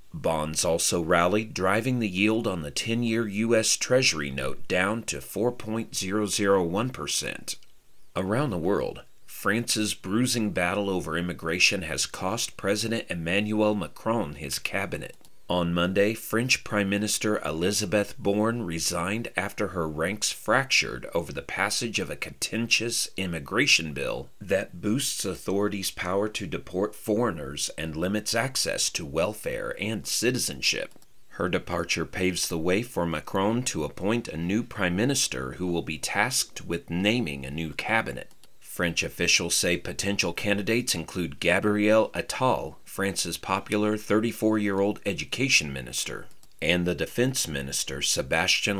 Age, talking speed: 40-59, 130 wpm